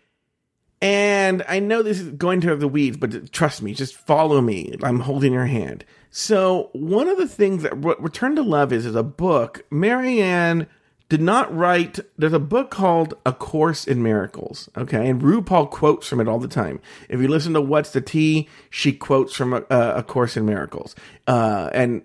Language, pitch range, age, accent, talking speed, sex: English, 125-170 Hz, 40-59, American, 190 wpm, male